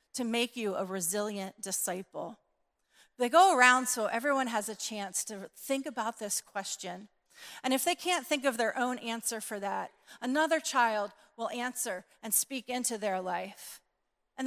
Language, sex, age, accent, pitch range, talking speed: English, female, 40-59, American, 205-260 Hz, 165 wpm